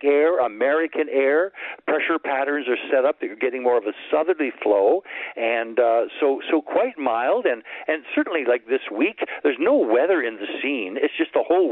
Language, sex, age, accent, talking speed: English, male, 60-79, American, 200 wpm